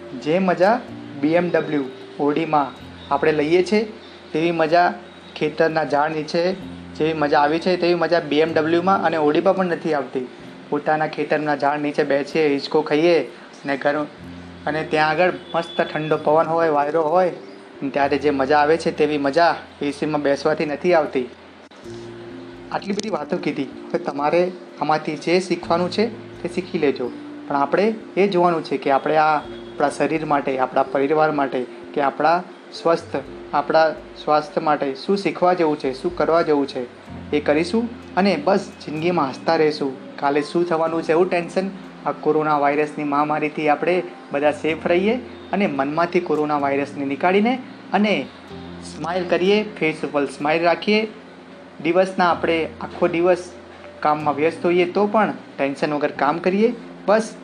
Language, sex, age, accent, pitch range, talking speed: Gujarati, male, 30-49, native, 145-175 Hz, 135 wpm